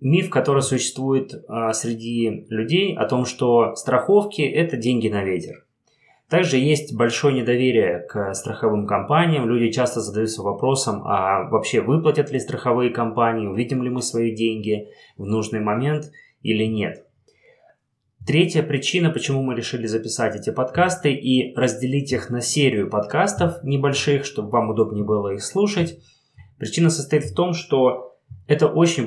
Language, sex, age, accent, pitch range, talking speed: Russian, male, 20-39, native, 115-150 Hz, 140 wpm